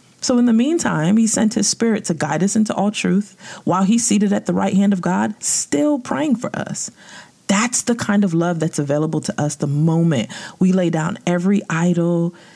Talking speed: 205 wpm